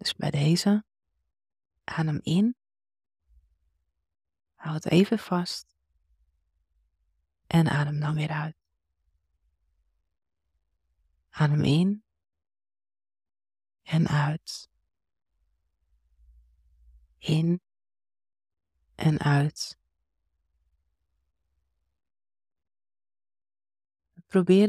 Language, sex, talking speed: Dutch, female, 55 wpm